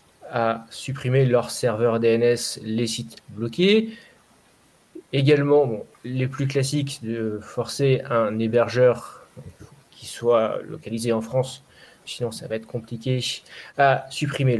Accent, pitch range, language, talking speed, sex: French, 115-155 Hz, French, 120 wpm, male